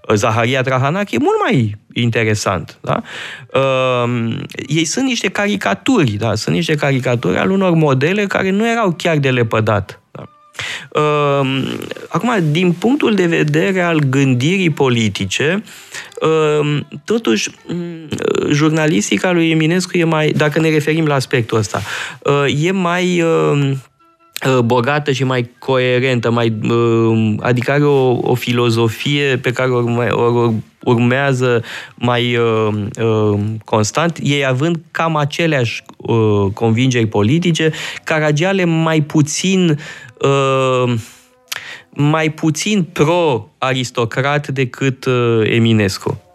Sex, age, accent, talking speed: male, 20-39, native, 95 wpm